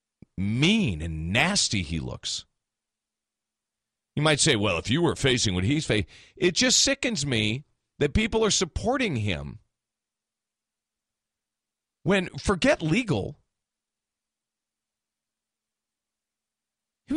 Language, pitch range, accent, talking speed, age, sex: English, 95-150 Hz, American, 100 wpm, 40-59, male